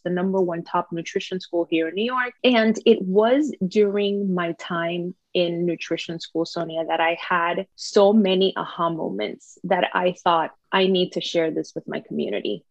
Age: 30-49